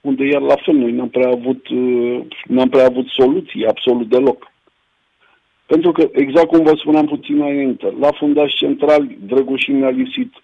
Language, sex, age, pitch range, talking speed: Romanian, male, 50-69, 120-170 Hz, 170 wpm